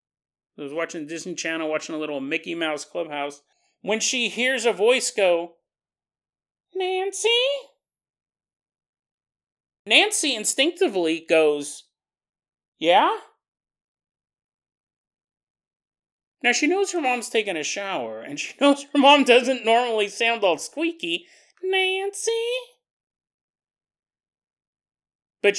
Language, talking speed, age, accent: English, 100 wpm, 30-49, American